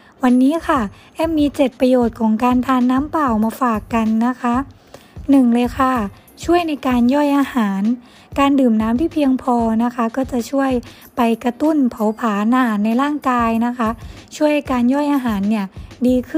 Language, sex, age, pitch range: Thai, female, 20-39, 225-265 Hz